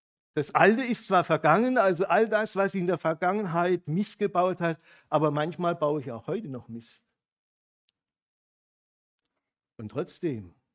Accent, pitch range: German, 140-195 Hz